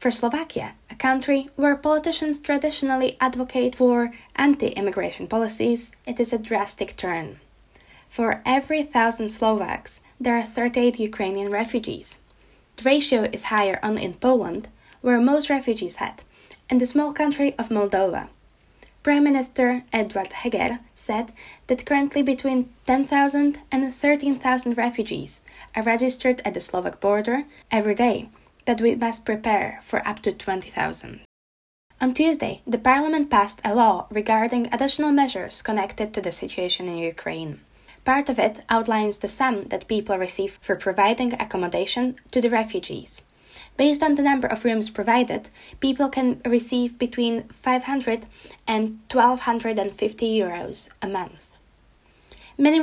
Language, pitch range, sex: Slovak, 215-265 Hz, female